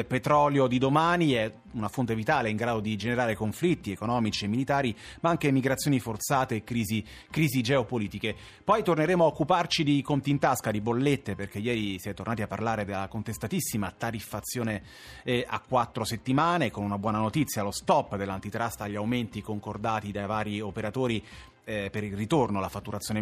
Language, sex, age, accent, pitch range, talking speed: Italian, male, 30-49, native, 105-135 Hz, 170 wpm